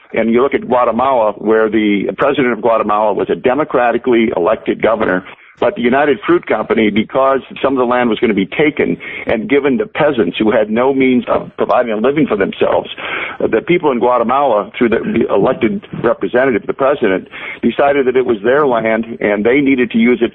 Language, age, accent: English, 50-69, American